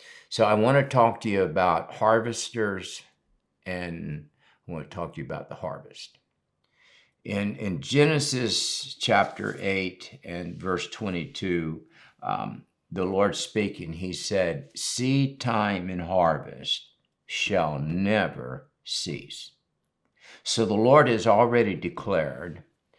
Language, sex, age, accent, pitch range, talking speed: English, male, 60-79, American, 90-115 Hz, 120 wpm